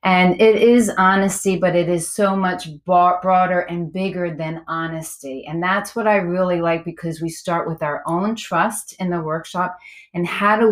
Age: 30-49